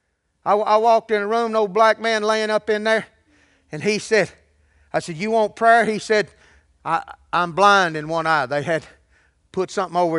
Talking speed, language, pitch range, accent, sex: 205 wpm, English, 165-245 Hz, American, male